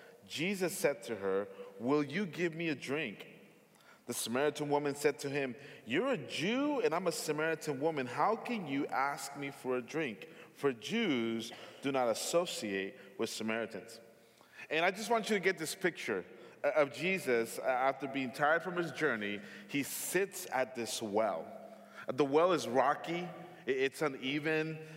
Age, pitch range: 30-49, 135-195 Hz